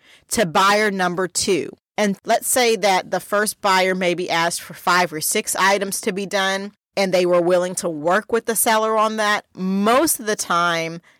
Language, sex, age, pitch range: English, female, 30-49, 170-210 Hz